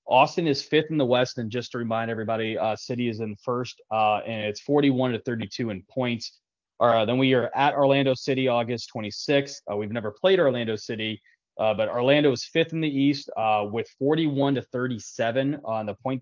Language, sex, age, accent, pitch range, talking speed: English, male, 20-39, American, 110-135 Hz, 205 wpm